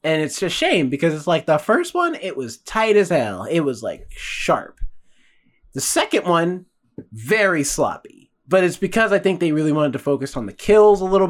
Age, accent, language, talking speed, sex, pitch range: 20-39, American, English, 205 wpm, male, 125-175 Hz